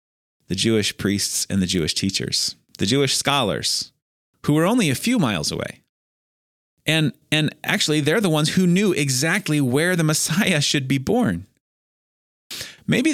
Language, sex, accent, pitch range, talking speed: English, male, American, 105-145 Hz, 150 wpm